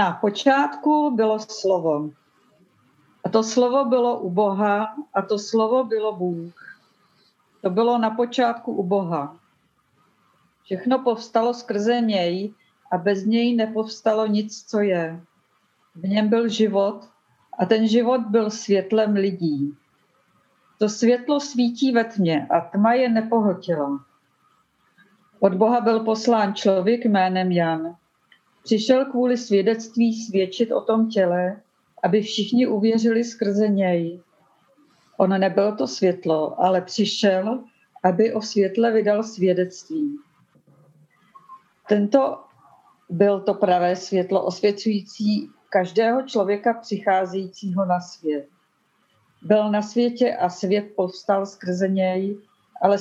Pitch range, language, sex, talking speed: 190-230 Hz, Czech, female, 115 wpm